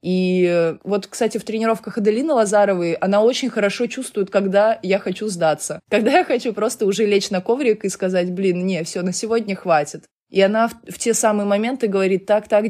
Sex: female